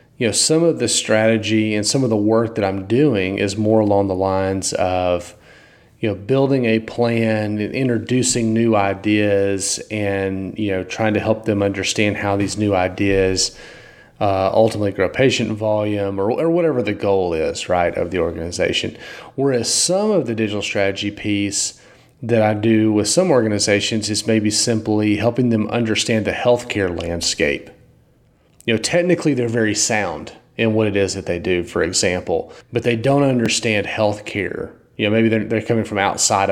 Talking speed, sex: 175 wpm, male